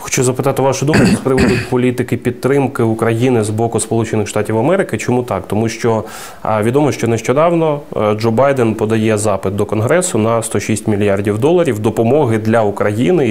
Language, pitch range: Ukrainian, 105-125 Hz